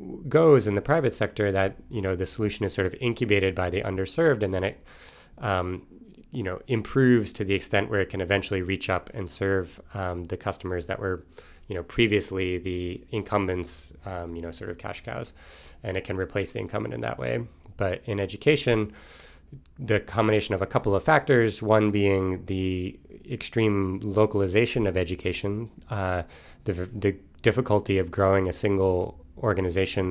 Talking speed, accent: 175 wpm, American